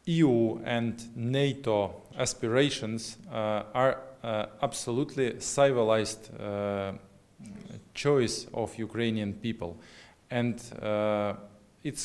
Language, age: English, 20-39